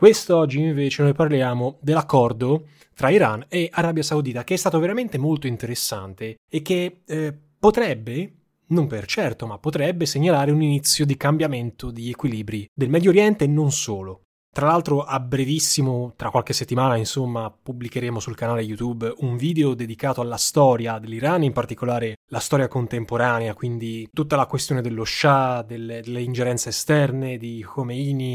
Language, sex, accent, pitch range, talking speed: Italian, male, native, 120-150 Hz, 155 wpm